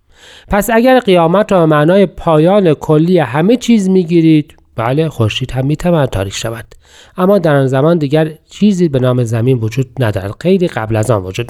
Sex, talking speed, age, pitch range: male, 185 wpm, 40-59, 115-165 Hz